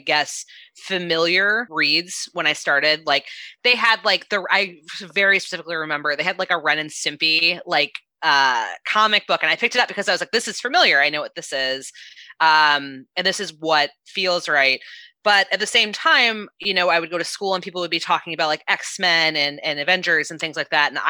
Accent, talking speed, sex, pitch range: American, 220 wpm, female, 155-195 Hz